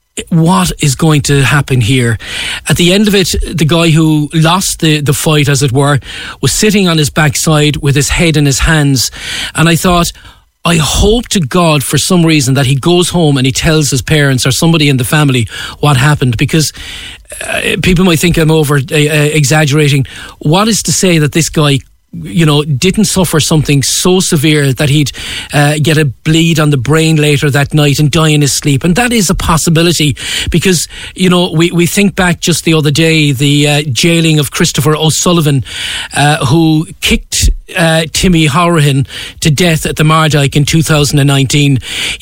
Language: English